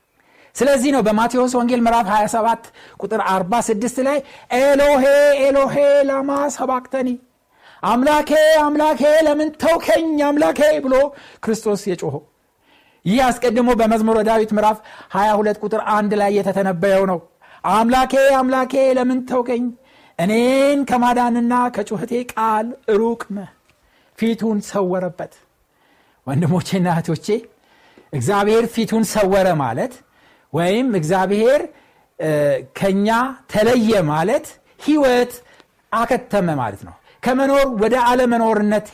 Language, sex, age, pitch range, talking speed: Amharic, male, 60-79, 205-275 Hz, 95 wpm